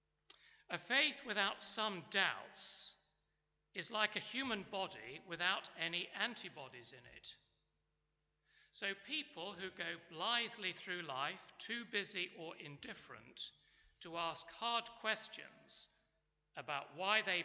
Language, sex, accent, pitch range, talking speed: English, male, British, 170-235 Hz, 115 wpm